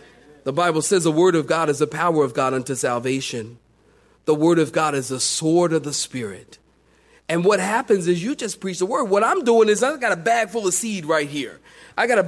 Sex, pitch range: male, 155-240 Hz